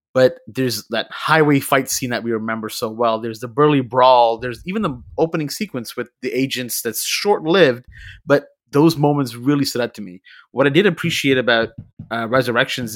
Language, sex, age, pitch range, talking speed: English, male, 30-49, 115-140 Hz, 185 wpm